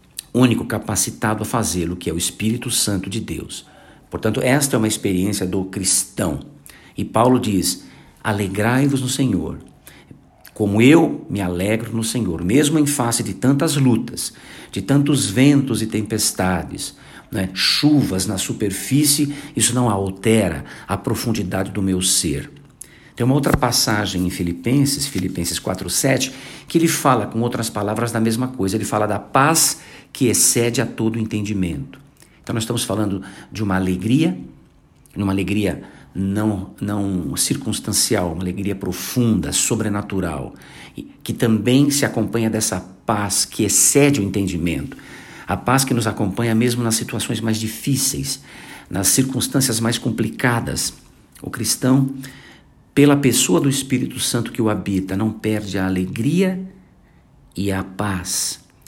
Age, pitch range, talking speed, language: 50-69, 95-130 Hz, 140 wpm, Portuguese